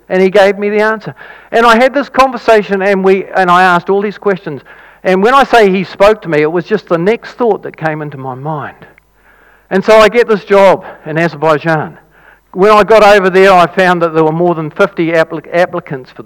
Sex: male